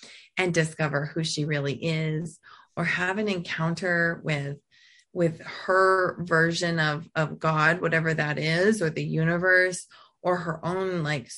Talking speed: 140 wpm